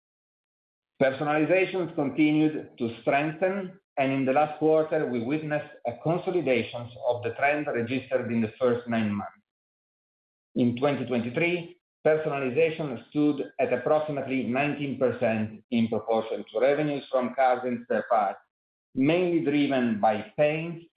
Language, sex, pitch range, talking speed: English, male, 115-155 Hz, 120 wpm